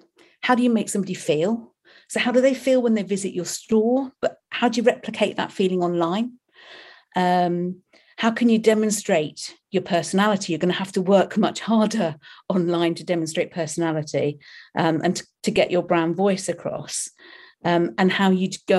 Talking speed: 180 wpm